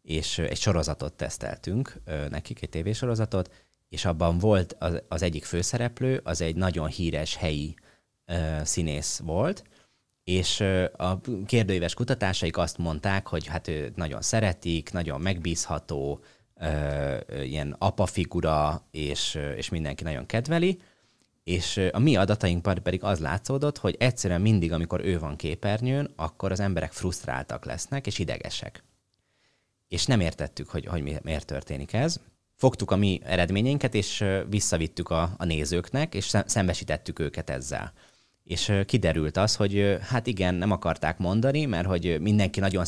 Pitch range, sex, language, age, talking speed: 80-105 Hz, male, Hungarian, 20-39, 135 wpm